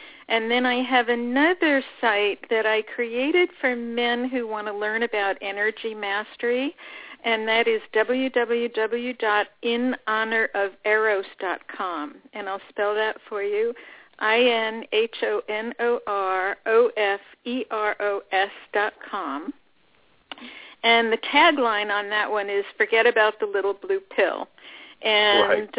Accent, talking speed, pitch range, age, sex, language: American, 100 wpm, 215-270 Hz, 50-69, female, English